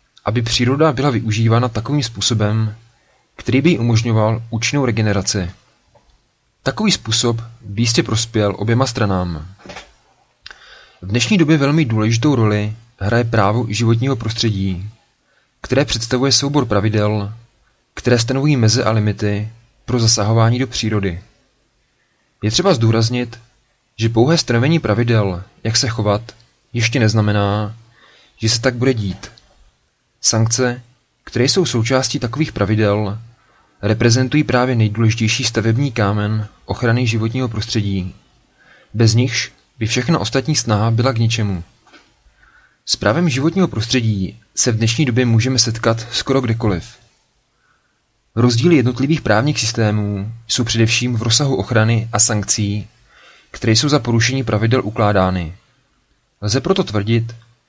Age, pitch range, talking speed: 30-49, 105-125 Hz, 120 wpm